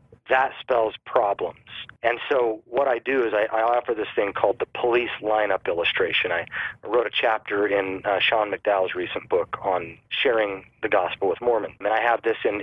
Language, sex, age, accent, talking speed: English, male, 40-59, American, 190 wpm